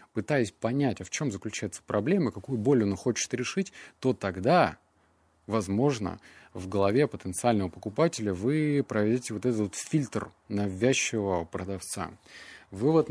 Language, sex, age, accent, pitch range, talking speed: Russian, male, 30-49, native, 95-125 Hz, 125 wpm